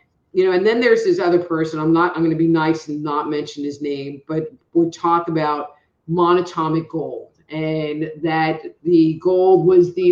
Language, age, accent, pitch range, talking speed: English, 50-69, American, 150-185 Hz, 195 wpm